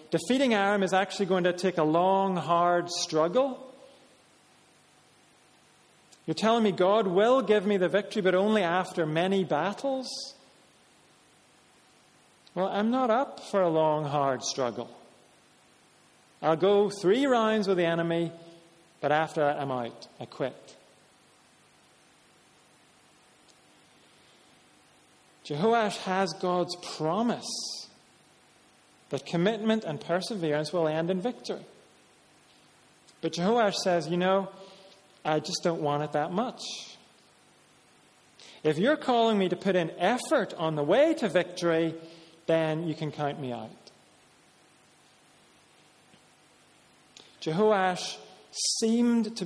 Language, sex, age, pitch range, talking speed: English, male, 40-59, 160-215 Hz, 115 wpm